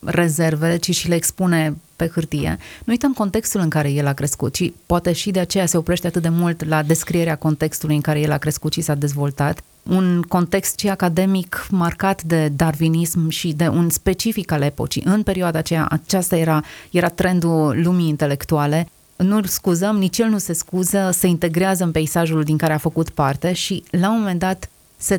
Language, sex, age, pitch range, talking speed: Romanian, female, 30-49, 155-175 Hz, 190 wpm